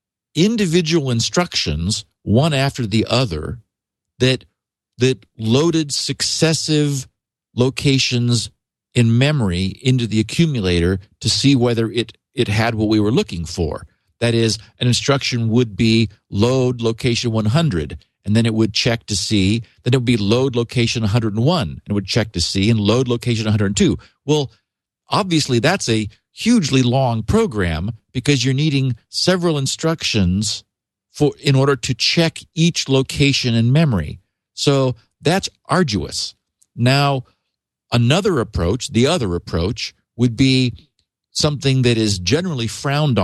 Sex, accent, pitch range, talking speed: male, American, 110-140 Hz, 135 wpm